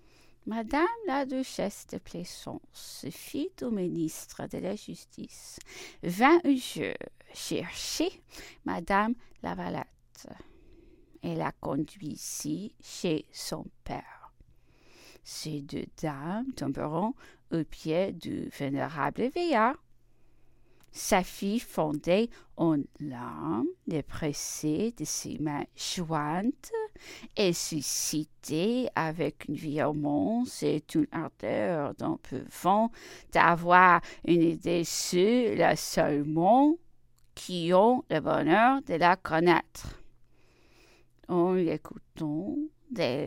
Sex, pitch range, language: female, 155-250 Hz, English